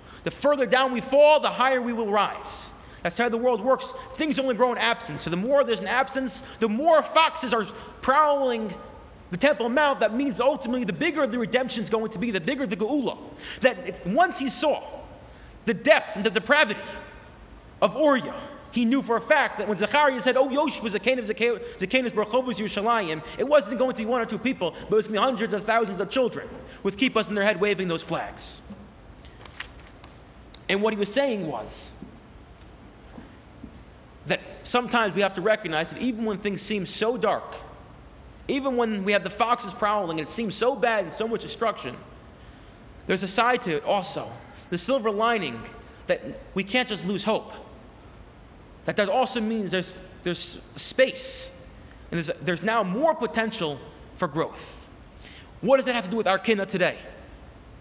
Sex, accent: male, American